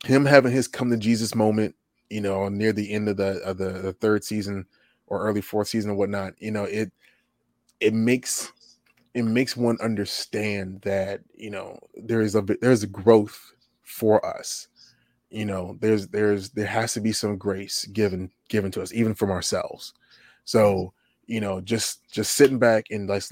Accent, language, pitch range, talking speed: American, English, 100-120 Hz, 185 wpm